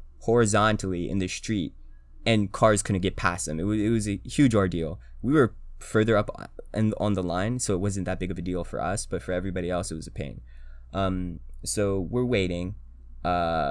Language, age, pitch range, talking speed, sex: English, 20-39, 65-105 Hz, 210 wpm, male